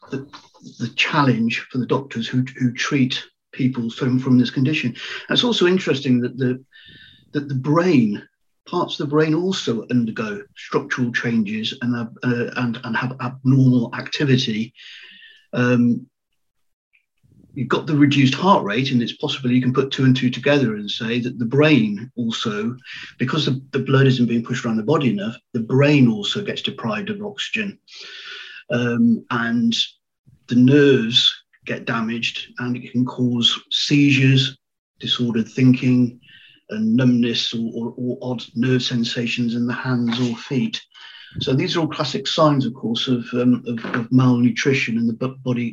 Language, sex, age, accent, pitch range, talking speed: English, male, 50-69, British, 120-145 Hz, 160 wpm